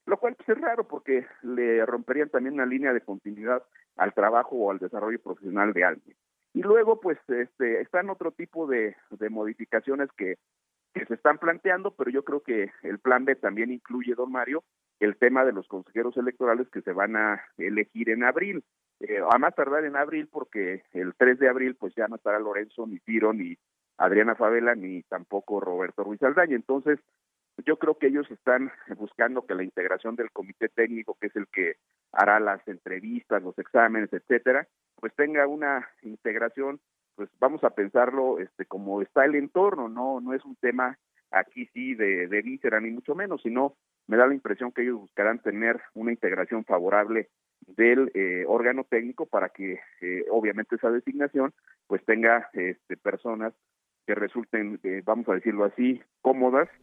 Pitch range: 110-140 Hz